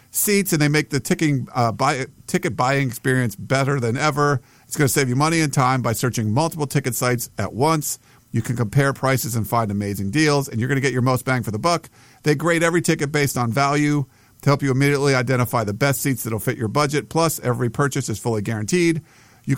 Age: 50-69